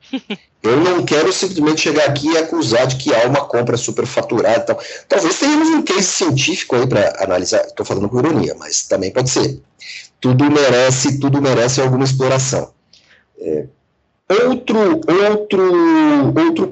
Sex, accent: male, Brazilian